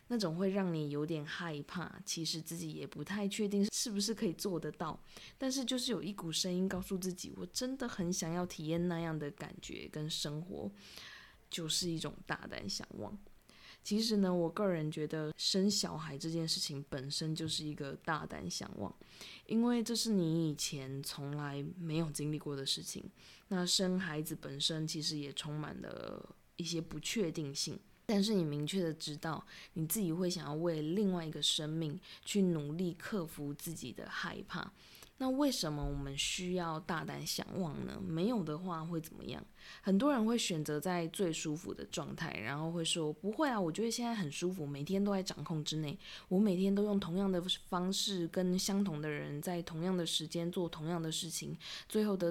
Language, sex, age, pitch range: Chinese, female, 20-39, 155-195 Hz